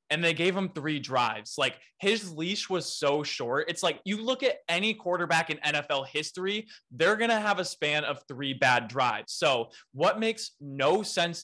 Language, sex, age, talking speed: English, male, 20-39, 190 wpm